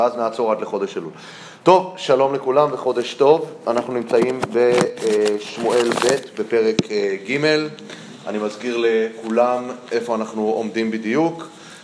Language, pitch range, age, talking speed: Hebrew, 115-160 Hz, 30-49, 115 wpm